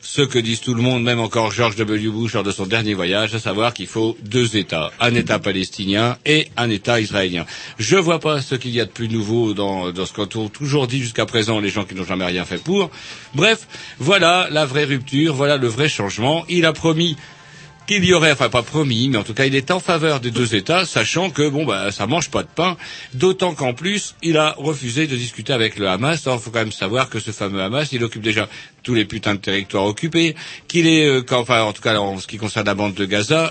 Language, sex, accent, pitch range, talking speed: French, male, French, 110-150 Hz, 250 wpm